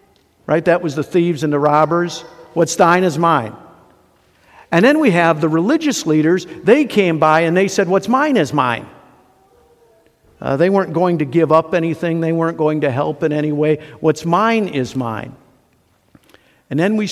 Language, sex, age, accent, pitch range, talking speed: English, male, 50-69, American, 145-185 Hz, 180 wpm